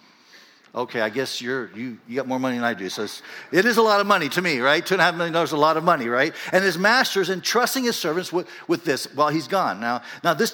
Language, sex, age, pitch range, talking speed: English, male, 50-69, 145-225 Hz, 290 wpm